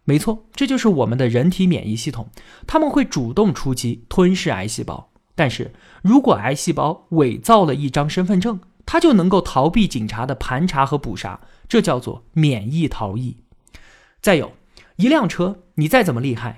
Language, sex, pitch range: Chinese, male, 125-205 Hz